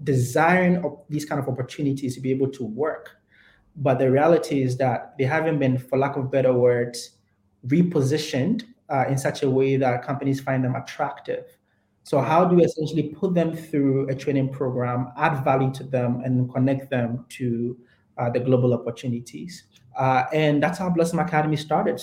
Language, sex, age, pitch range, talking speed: English, male, 20-39, 125-150 Hz, 175 wpm